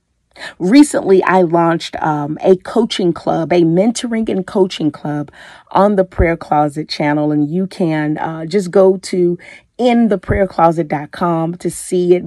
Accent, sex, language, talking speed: American, female, English, 135 wpm